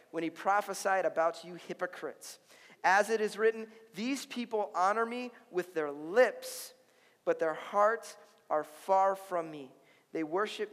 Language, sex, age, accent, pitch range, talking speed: English, male, 40-59, American, 180-230 Hz, 145 wpm